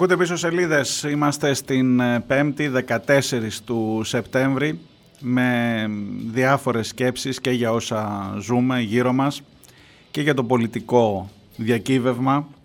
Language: Greek